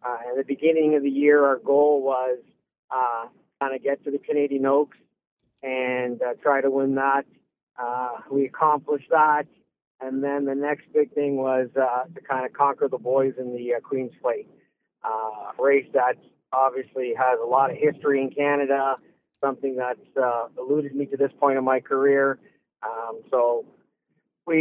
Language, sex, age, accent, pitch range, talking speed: English, male, 50-69, American, 130-150 Hz, 175 wpm